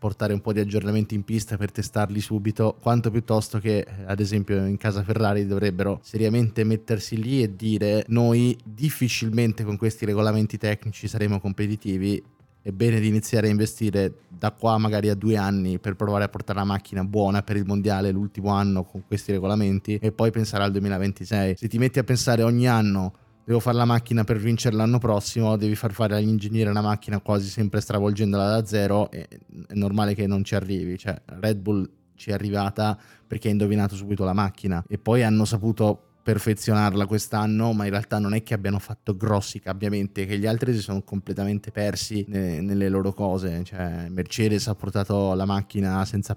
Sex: male